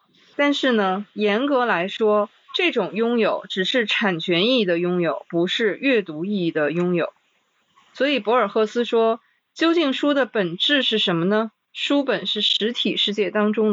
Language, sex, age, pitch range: Chinese, female, 20-39, 185-245 Hz